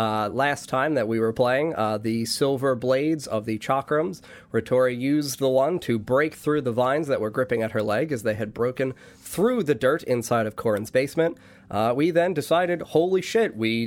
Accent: American